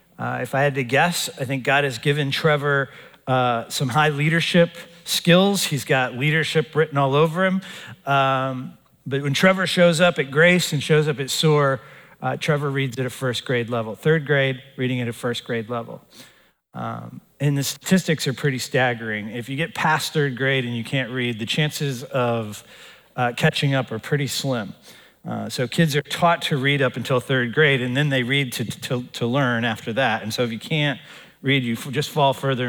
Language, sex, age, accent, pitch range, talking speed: English, male, 40-59, American, 120-145 Hz, 205 wpm